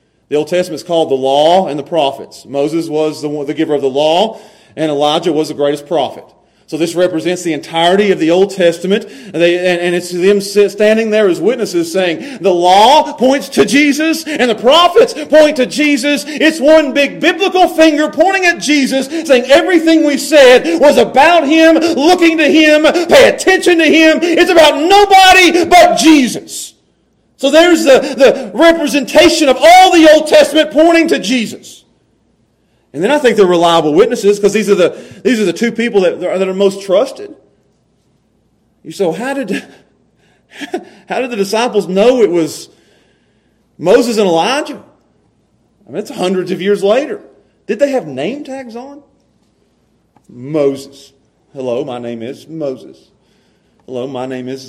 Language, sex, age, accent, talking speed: English, male, 40-59, American, 170 wpm